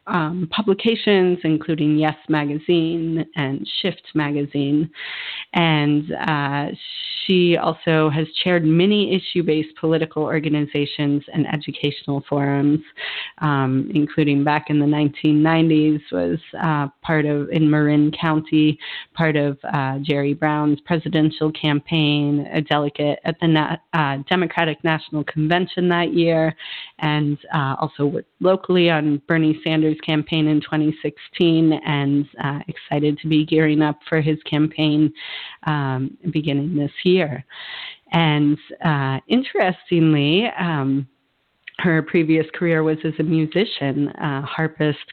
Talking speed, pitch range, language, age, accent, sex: 115 wpm, 150-165 Hz, English, 30-49, American, female